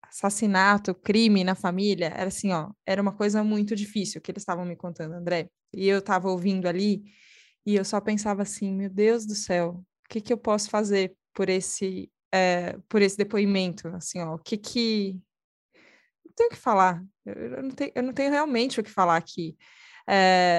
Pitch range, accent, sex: 180-210 Hz, Brazilian, female